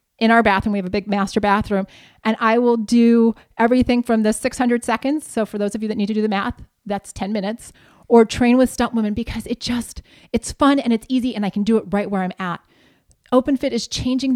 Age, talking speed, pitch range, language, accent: 30-49, 240 wpm, 205-245 Hz, English, American